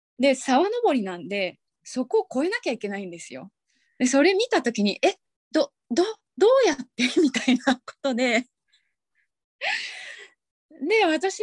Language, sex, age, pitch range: Japanese, female, 20-39, 185-285 Hz